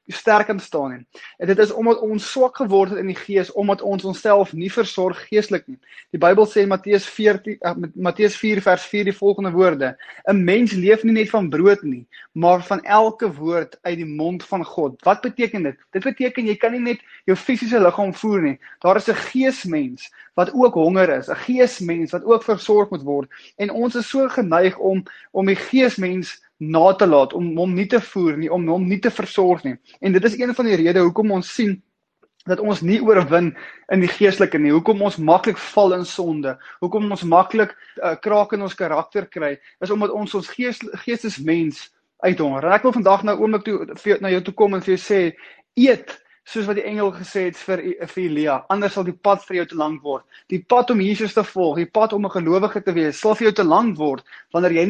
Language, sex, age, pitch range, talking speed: English, male, 20-39, 175-215 Hz, 215 wpm